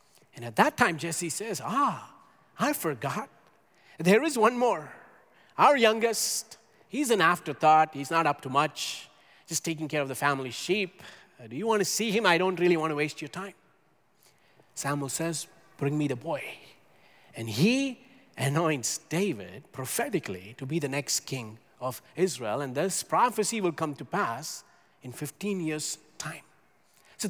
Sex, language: male, English